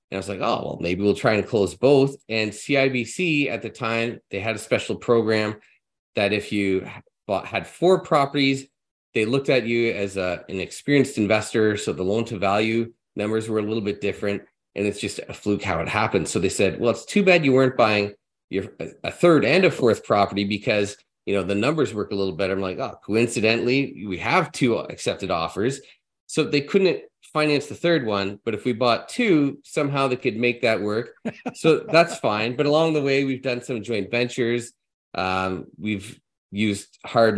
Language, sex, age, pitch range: English, male, 30-49, 95-120 Hz